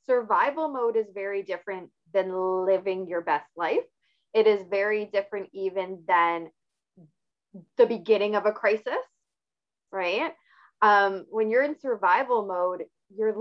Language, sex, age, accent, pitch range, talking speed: English, female, 20-39, American, 185-225 Hz, 130 wpm